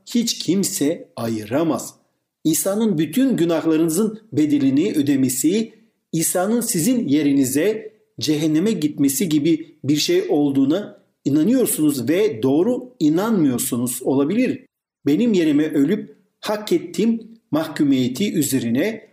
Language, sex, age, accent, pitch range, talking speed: Turkish, male, 50-69, native, 140-230 Hz, 90 wpm